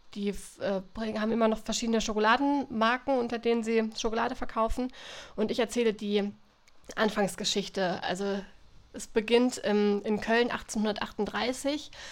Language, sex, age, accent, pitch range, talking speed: German, female, 20-39, German, 205-230 Hz, 120 wpm